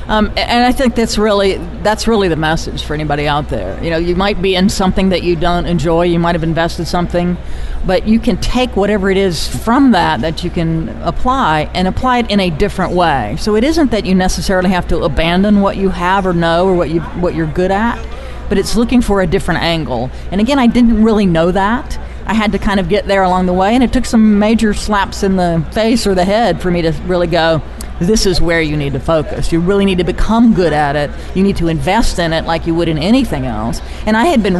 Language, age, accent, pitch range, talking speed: English, 40-59, American, 170-215 Hz, 250 wpm